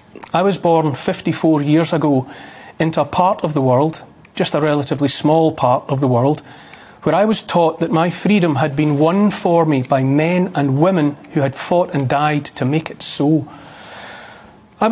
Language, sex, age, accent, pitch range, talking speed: English, male, 40-59, British, 145-175 Hz, 185 wpm